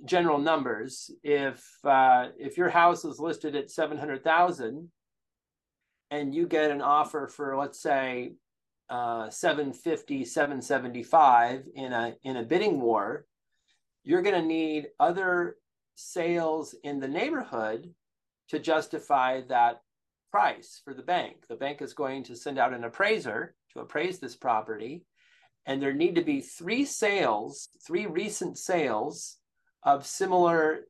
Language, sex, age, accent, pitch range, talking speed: English, male, 30-49, American, 135-175 Hz, 130 wpm